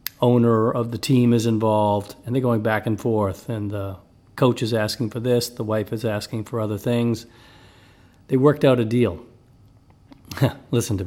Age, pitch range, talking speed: 40-59, 105-125 Hz, 180 wpm